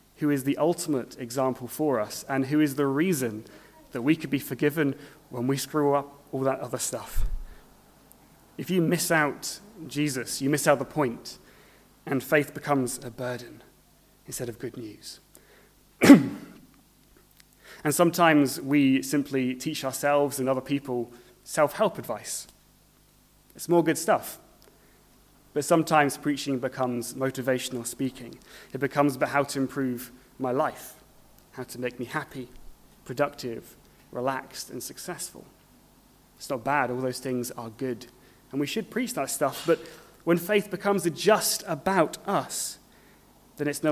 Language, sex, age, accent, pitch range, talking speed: English, male, 30-49, British, 125-150 Hz, 145 wpm